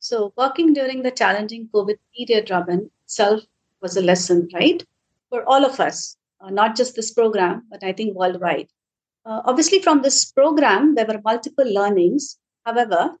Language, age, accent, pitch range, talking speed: English, 50-69, Indian, 220-290 Hz, 165 wpm